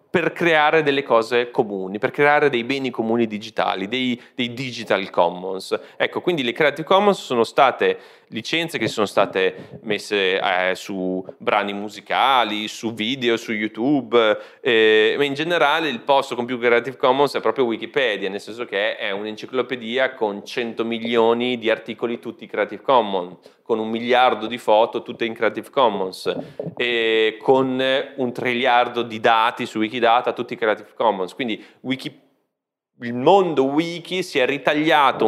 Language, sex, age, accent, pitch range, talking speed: Italian, male, 30-49, native, 110-150 Hz, 150 wpm